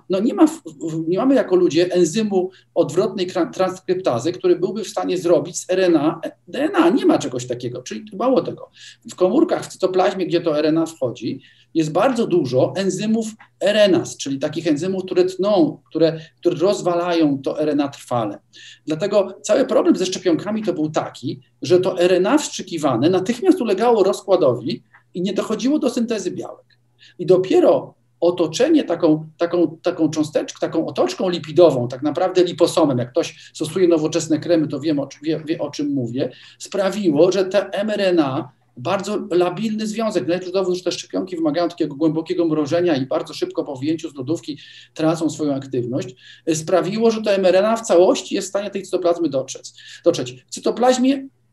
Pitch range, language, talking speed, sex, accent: 160-200 Hz, Polish, 155 wpm, male, native